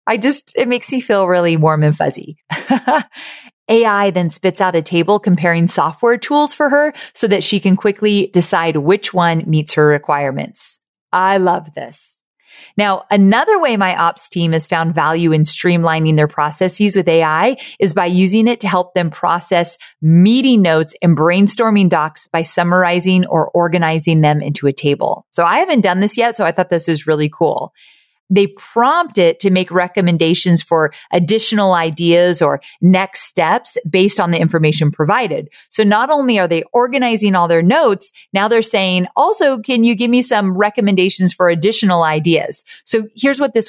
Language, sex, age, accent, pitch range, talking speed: English, female, 30-49, American, 165-215 Hz, 175 wpm